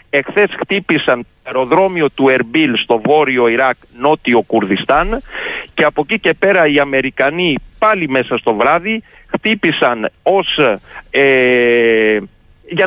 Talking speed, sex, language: 110 wpm, male, Greek